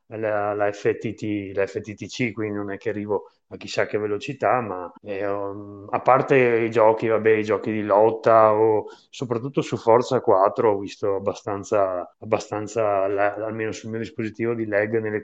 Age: 30-49